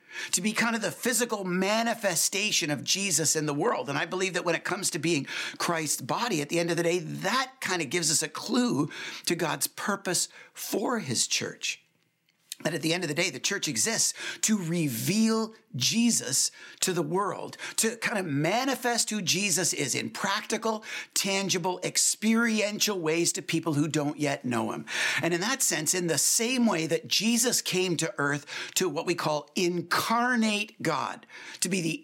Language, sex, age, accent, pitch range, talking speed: English, male, 50-69, American, 160-220 Hz, 185 wpm